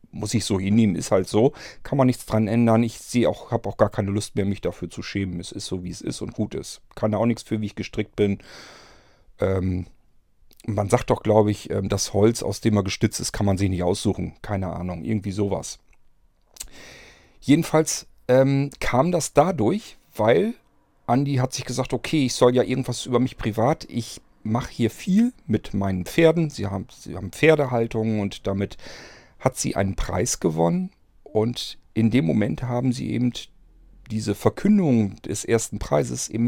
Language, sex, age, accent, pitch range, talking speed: German, male, 40-59, German, 100-130 Hz, 190 wpm